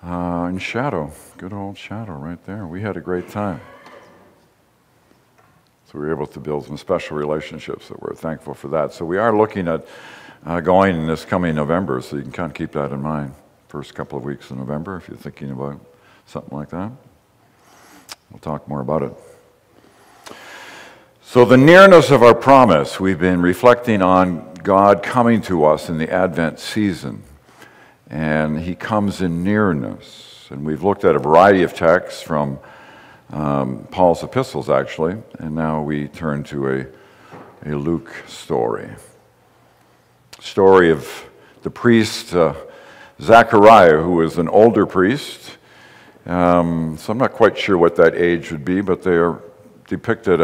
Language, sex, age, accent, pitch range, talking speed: English, male, 60-79, American, 75-95 Hz, 165 wpm